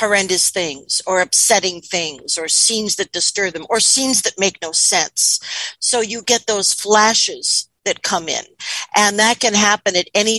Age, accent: 50-69, American